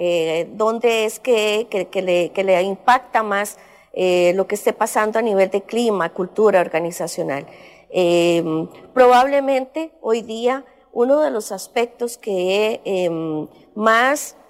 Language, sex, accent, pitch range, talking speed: English, female, American, 195-260 Hz, 135 wpm